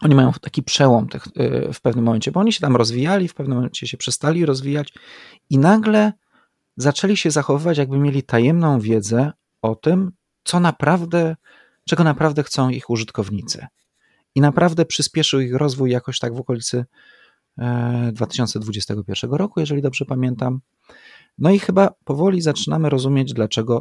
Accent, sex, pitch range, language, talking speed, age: native, male, 115-145 Hz, Polish, 150 wpm, 30-49